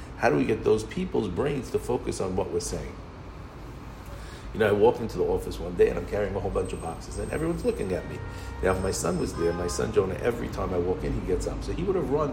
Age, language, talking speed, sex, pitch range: 50-69, English, 275 wpm, male, 85-105 Hz